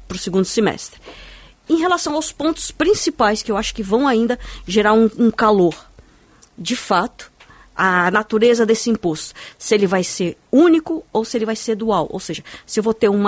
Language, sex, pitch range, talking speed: Portuguese, female, 190-235 Hz, 195 wpm